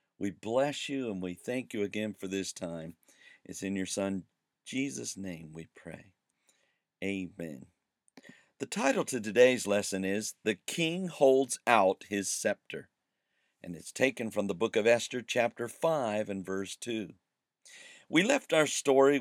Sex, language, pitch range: male, English, 95-135 Hz